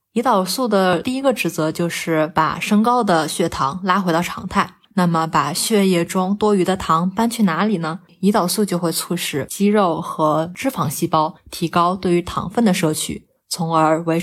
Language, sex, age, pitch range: Chinese, female, 20-39, 165-200 Hz